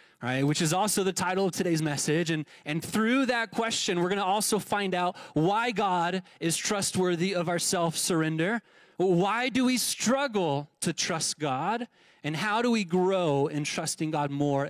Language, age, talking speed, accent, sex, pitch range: English, 30-49, 175 wpm, American, male, 130-175 Hz